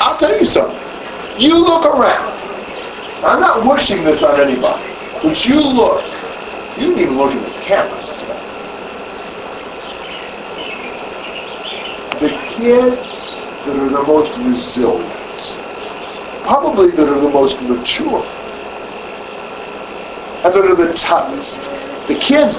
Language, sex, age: English, male, 50-69